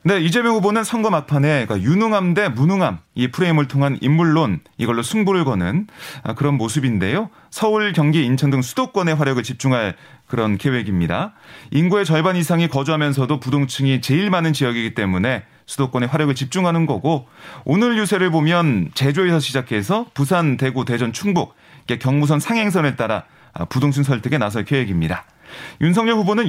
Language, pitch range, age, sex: Korean, 130-180 Hz, 30-49, male